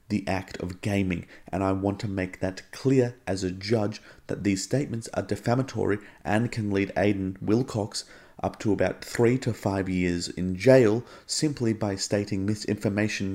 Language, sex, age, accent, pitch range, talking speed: English, male, 30-49, Australian, 95-110 Hz, 165 wpm